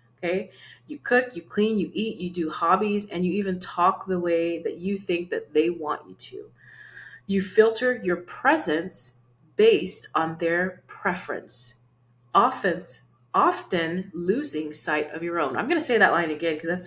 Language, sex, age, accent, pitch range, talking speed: English, female, 30-49, American, 155-200 Hz, 170 wpm